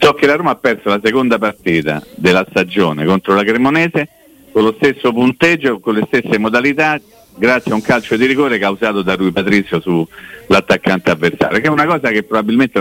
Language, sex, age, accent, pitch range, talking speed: Italian, male, 50-69, native, 85-115 Hz, 185 wpm